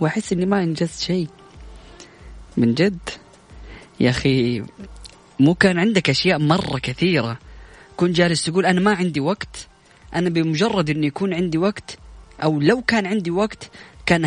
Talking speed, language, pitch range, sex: 145 wpm, Arabic, 145-195 Hz, female